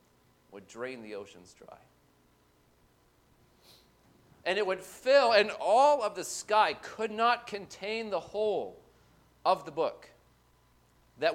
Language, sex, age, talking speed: English, male, 40-59, 120 wpm